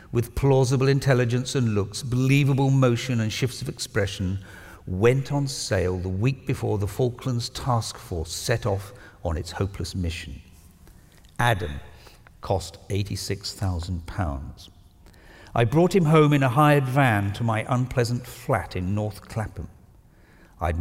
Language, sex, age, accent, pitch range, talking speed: English, male, 50-69, British, 95-130 Hz, 135 wpm